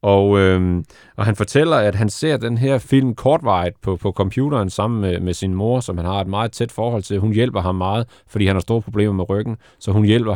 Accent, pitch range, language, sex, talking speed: native, 100-125 Hz, Danish, male, 245 wpm